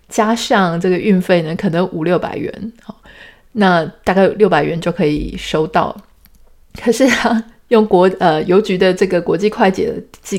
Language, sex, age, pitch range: Chinese, female, 20-39, 180-225 Hz